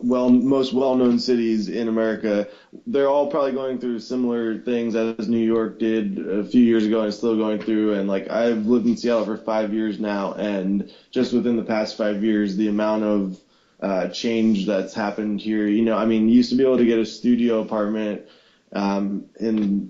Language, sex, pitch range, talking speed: English, male, 105-120 Hz, 200 wpm